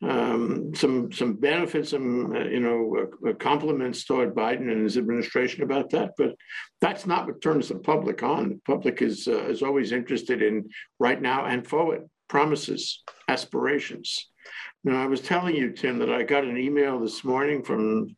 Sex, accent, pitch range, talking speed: male, American, 125-170 Hz, 180 wpm